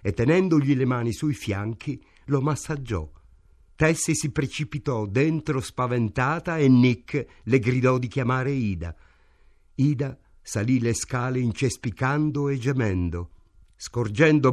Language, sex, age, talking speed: Italian, male, 50-69, 115 wpm